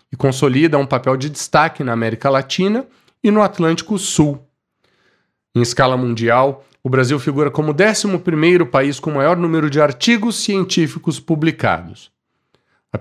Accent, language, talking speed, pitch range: Brazilian, Portuguese, 140 wpm, 120-175 Hz